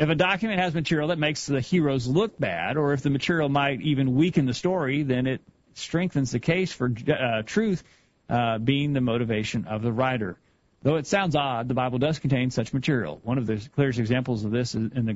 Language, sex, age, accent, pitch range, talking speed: English, male, 40-59, American, 120-150 Hz, 220 wpm